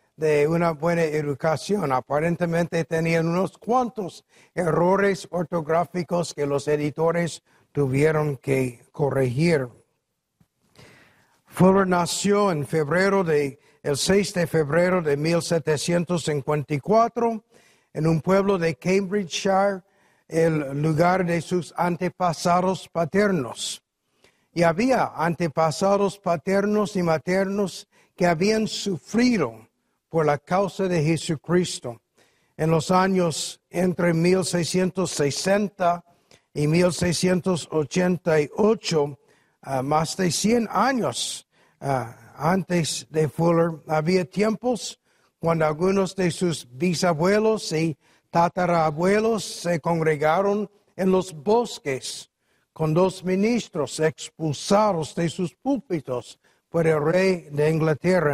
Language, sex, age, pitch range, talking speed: English, male, 60-79, 155-190 Hz, 95 wpm